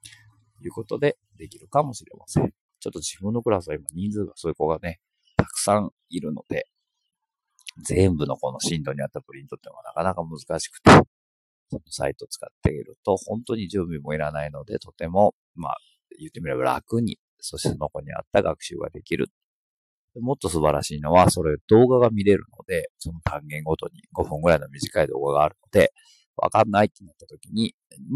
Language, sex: Japanese, male